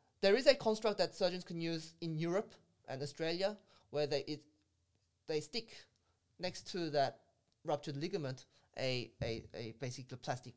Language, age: English, 20-39